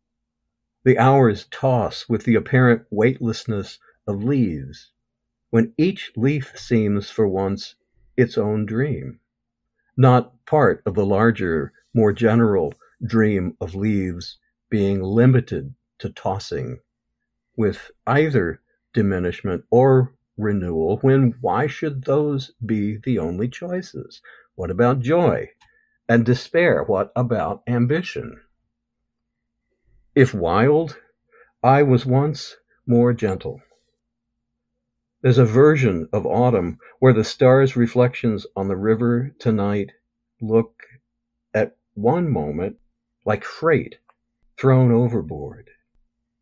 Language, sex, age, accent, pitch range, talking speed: English, male, 60-79, American, 115-130 Hz, 105 wpm